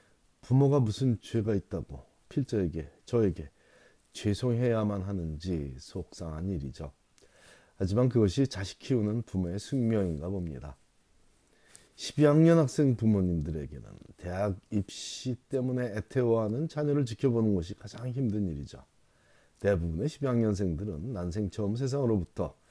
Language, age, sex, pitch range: Korean, 30-49, male, 85-130 Hz